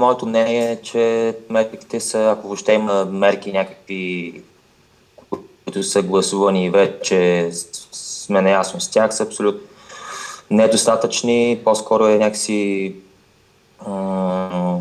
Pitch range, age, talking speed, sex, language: 95-110 Hz, 20-39, 100 wpm, male, Bulgarian